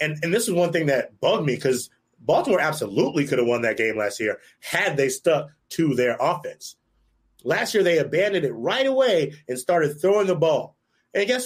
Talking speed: 205 wpm